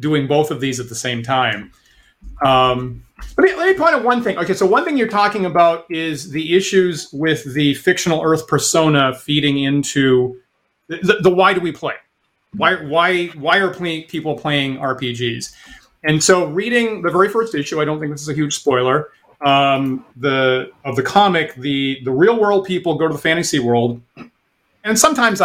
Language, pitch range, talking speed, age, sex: English, 135-175 Hz, 190 wpm, 30-49, male